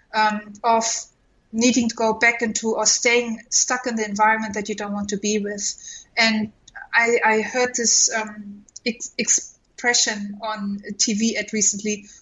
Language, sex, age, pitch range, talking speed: English, female, 30-49, 210-245 Hz, 145 wpm